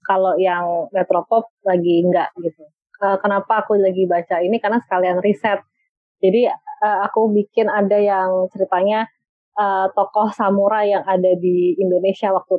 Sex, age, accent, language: female, 20-39, native, Indonesian